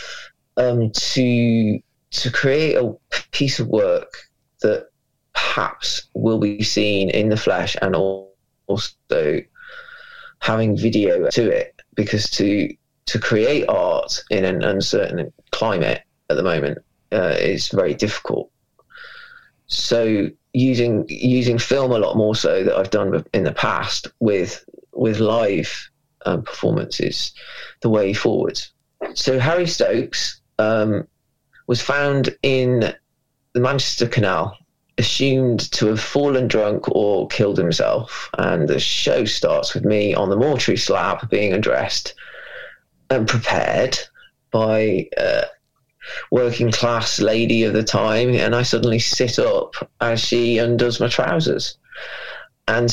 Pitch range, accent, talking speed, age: 110-145 Hz, British, 125 wpm, 20-39